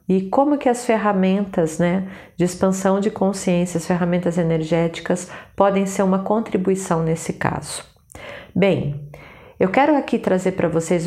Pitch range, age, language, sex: 165-195 Hz, 40-59, Portuguese, female